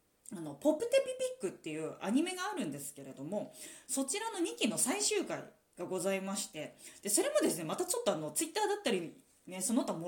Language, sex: Japanese, female